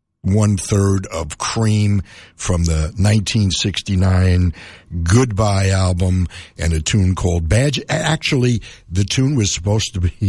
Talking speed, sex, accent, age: 120 wpm, male, American, 60-79